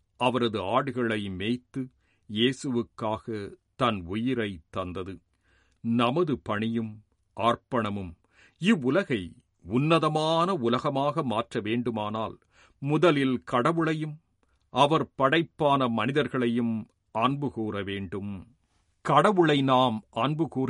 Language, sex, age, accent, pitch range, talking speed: Tamil, male, 50-69, native, 105-140 Hz, 70 wpm